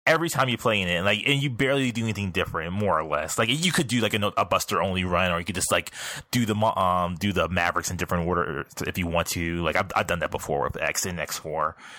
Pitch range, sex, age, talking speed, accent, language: 85-120 Hz, male, 20-39, 275 wpm, American, English